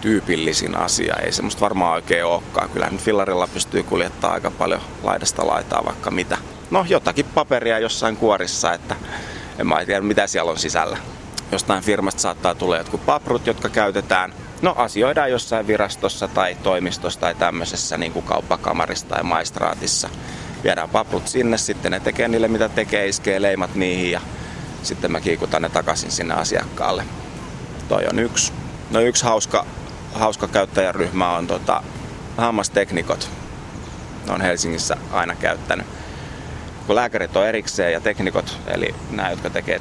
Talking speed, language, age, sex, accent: 145 wpm, Finnish, 30-49, male, native